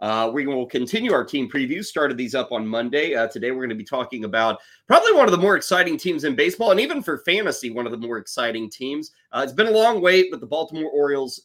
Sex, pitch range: male, 120-160 Hz